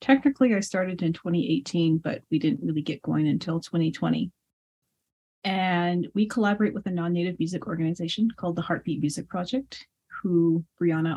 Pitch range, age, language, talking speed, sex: 165-195 Hz, 30-49, English, 150 wpm, female